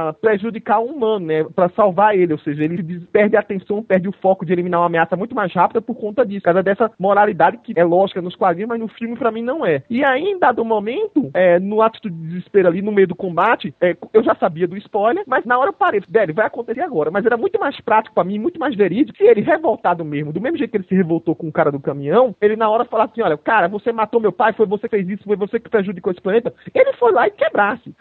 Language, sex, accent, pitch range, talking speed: Portuguese, male, Brazilian, 185-270 Hz, 265 wpm